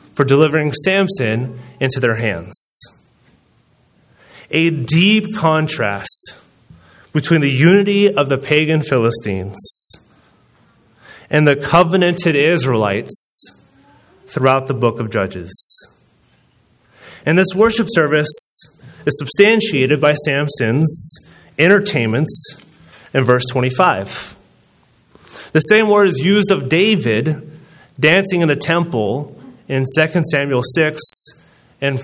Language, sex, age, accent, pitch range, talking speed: English, male, 30-49, American, 125-175 Hz, 100 wpm